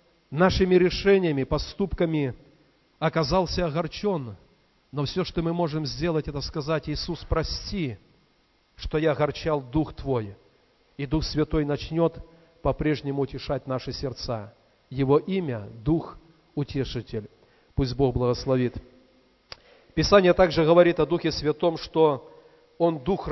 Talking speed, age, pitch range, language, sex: 115 wpm, 40-59, 135-175 Hz, Russian, male